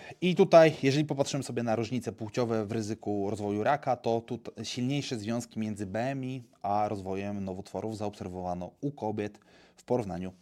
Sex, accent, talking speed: male, native, 150 wpm